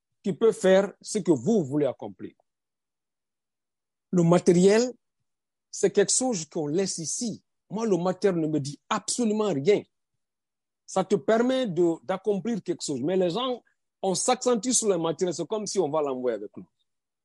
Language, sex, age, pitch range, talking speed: French, male, 50-69, 150-210 Hz, 165 wpm